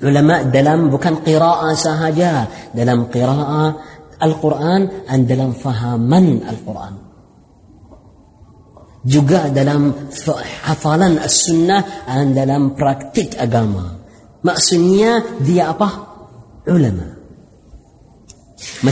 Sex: female